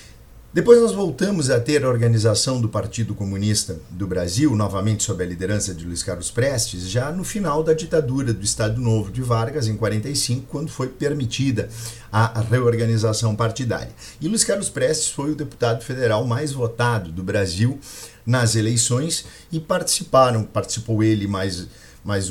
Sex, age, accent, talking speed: male, 50-69, Brazilian, 155 wpm